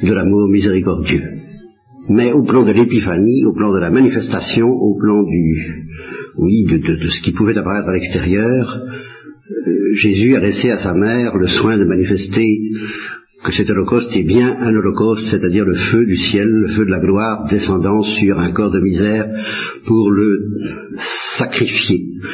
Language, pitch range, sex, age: French, 100-120 Hz, male, 60-79